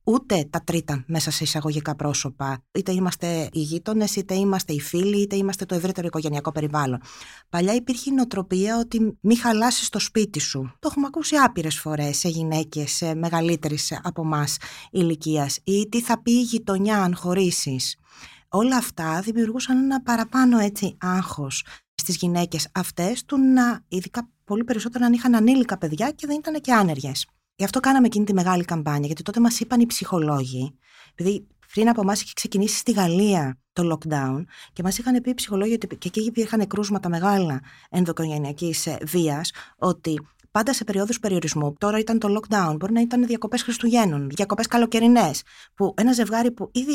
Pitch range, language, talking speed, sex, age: 160-225 Hz, Greek, 165 wpm, female, 20-39